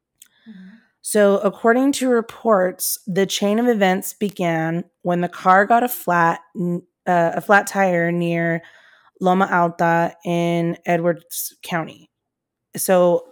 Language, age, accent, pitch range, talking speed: English, 20-39, American, 175-195 Hz, 115 wpm